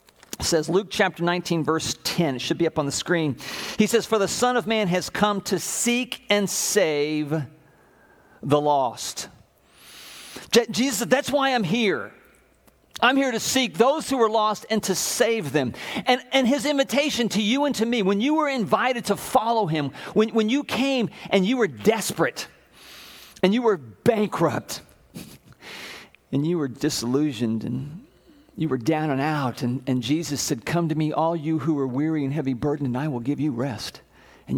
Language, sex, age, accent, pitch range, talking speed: English, male, 50-69, American, 135-210 Hz, 185 wpm